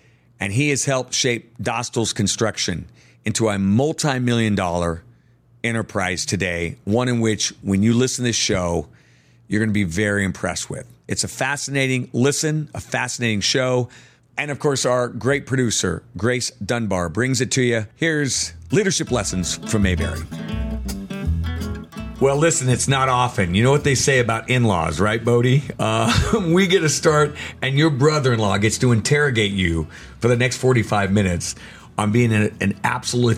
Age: 50-69